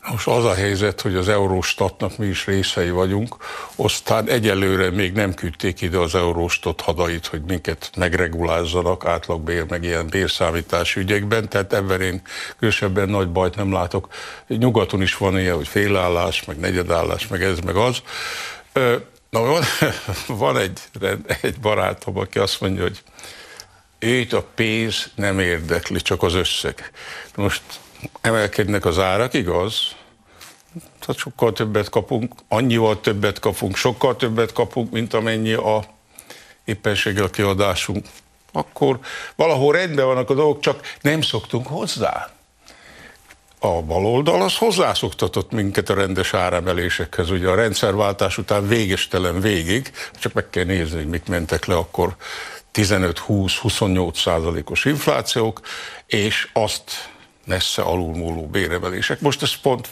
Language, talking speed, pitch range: Hungarian, 130 wpm, 90-110 Hz